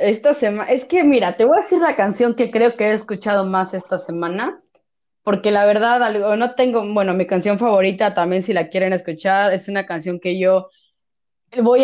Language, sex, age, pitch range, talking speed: Spanish, female, 20-39, 190-245 Hz, 200 wpm